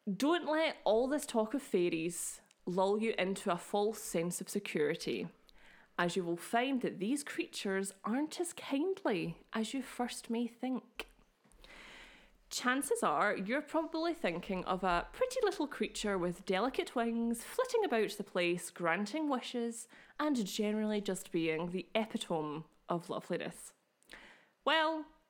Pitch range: 190-275 Hz